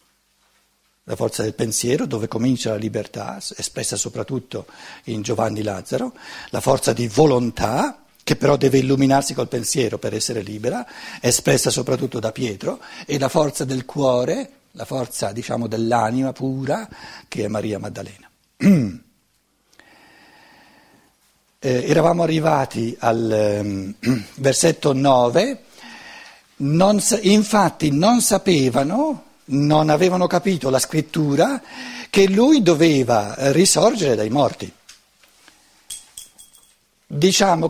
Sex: male